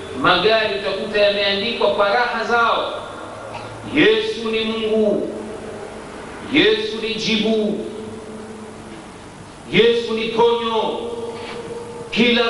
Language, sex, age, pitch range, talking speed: Swahili, male, 50-69, 220-285 Hz, 75 wpm